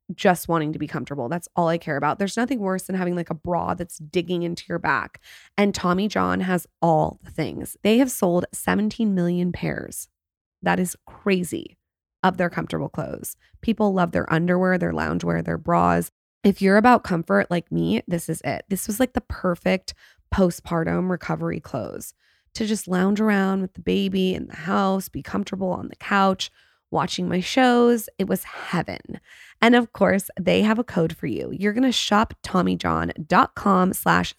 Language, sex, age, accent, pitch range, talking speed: English, female, 20-39, American, 165-200 Hz, 180 wpm